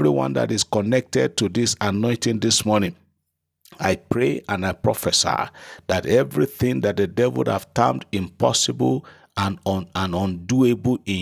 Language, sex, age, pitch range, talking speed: English, male, 50-69, 90-115 Hz, 155 wpm